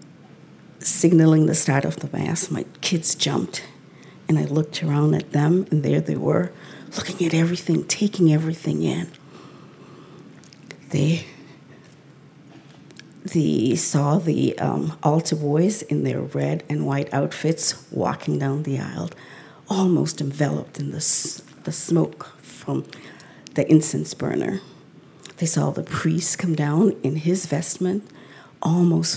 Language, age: English, 50-69